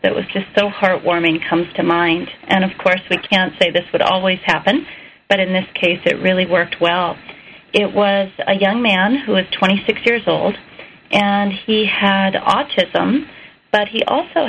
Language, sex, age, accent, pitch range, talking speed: English, female, 40-59, American, 185-220 Hz, 185 wpm